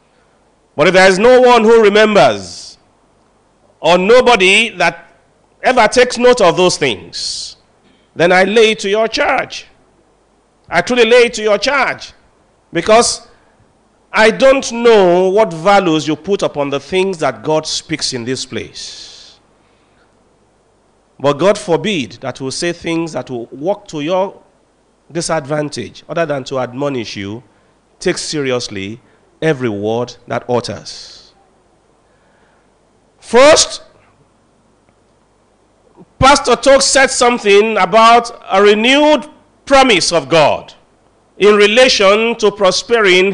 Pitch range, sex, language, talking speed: 150-225 Hz, male, English, 120 wpm